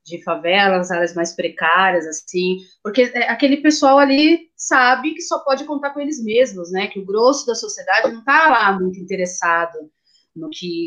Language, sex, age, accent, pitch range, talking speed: Portuguese, female, 30-49, Brazilian, 180-280 Hz, 170 wpm